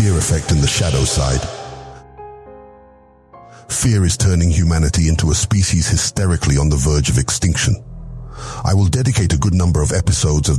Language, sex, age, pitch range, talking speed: English, male, 50-69, 80-115 Hz, 160 wpm